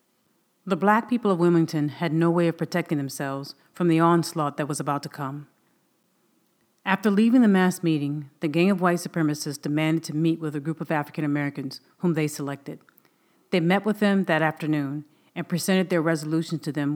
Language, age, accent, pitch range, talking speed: English, 40-59, American, 150-175 Hz, 190 wpm